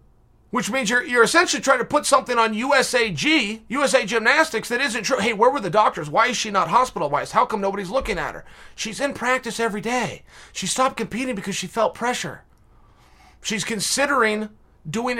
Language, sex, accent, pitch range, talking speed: English, male, American, 195-245 Hz, 185 wpm